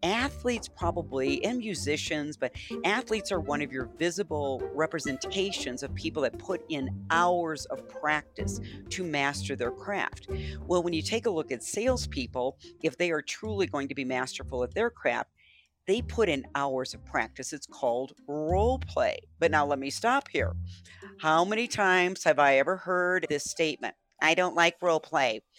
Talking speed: 170 wpm